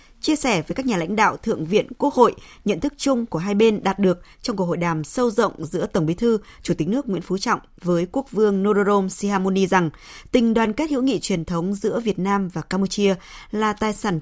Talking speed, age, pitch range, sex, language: 235 wpm, 20-39, 180-235 Hz, female, Vietnamese